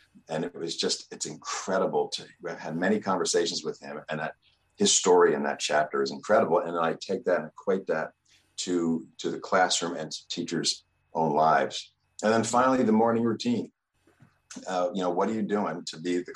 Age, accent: 50-69, American